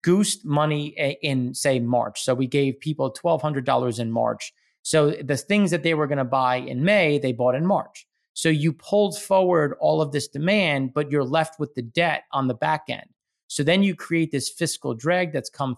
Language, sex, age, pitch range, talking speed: English, male, 30-49, 135-170 Hz, 205 wpm